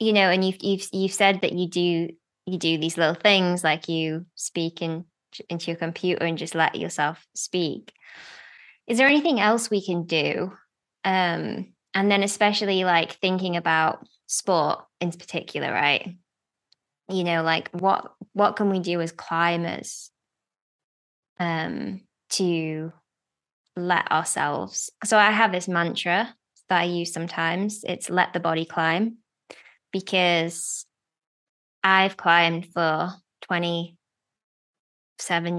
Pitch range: 160-190 Hz